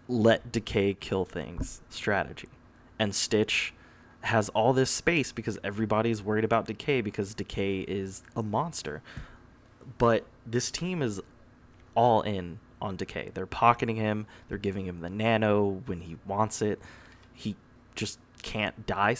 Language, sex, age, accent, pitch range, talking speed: English, male, 20-39, American, 95-120 Hz, 140 wpm